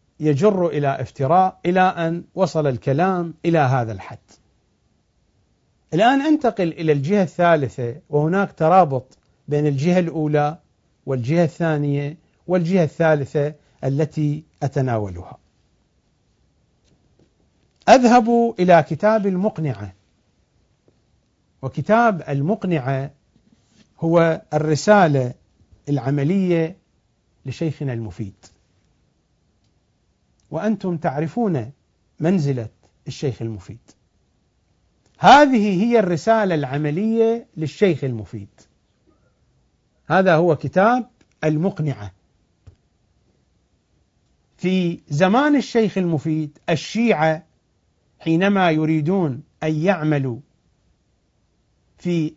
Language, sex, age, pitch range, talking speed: English, male, 50-69, 130-180 Hz, 70 wpm